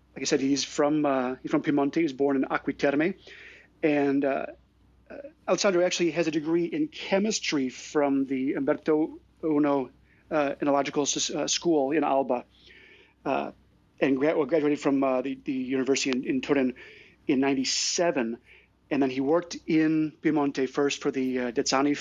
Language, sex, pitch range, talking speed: English, male, 140-165 Hz, 160 wpm